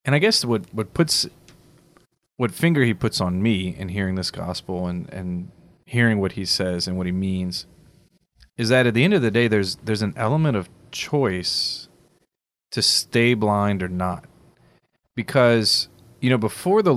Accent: American